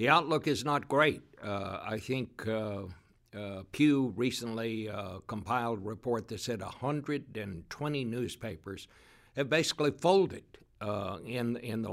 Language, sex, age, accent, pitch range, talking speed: English, male, 60-79, American, 105-130 Hz, 135 wpm